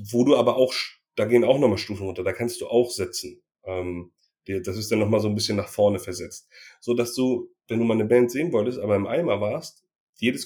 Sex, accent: male, German